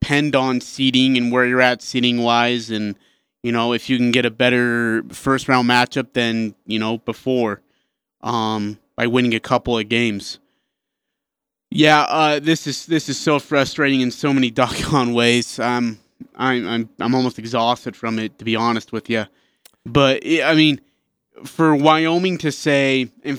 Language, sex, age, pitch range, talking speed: English, male, 20-39, 120-150 Hz, 175 wpm